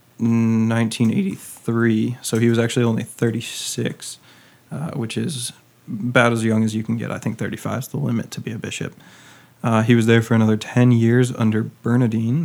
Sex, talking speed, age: male, 180 wpm, 20-39